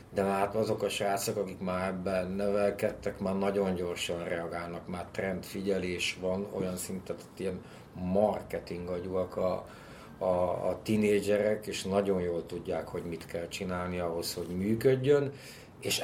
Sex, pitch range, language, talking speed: male, 90-105 Hz, Hungarian, 140 wpm